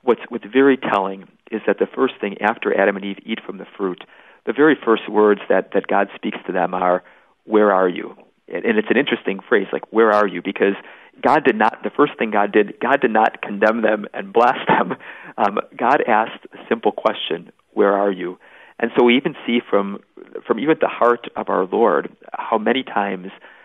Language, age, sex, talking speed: English, 40-59, male, 210 wpm